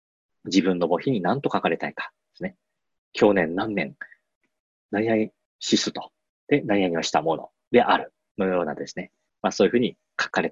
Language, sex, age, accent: Japanese, male, 40-59, native